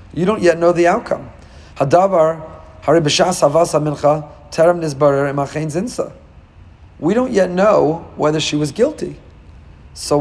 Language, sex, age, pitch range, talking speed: English, male, 40-59, 135-175 Hz, 90 wpm